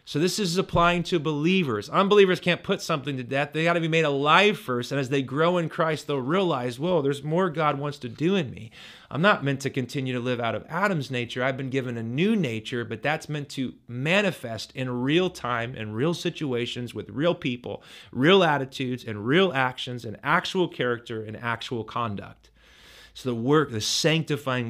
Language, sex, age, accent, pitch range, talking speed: English, male, 30-49, American, 110-150 Hz, 200 wpm